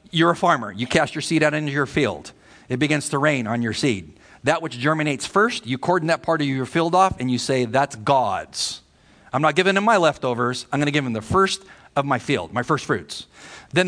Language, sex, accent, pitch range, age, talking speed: English, male, American, 115-165 Hz, 50-69, 240 wpm